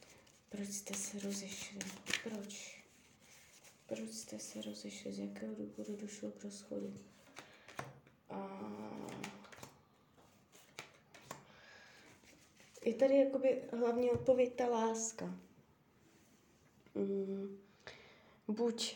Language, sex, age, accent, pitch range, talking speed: Czech, female, 20-39, native, 195-220 Hz, 70 wpm